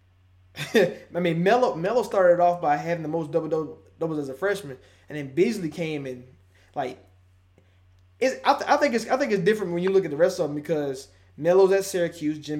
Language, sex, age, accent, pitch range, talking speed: English, male, 20-39, American, 135-185 Hz, 210 wpm